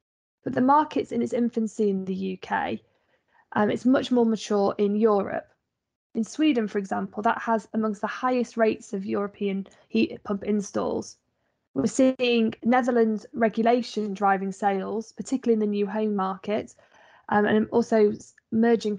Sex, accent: female, British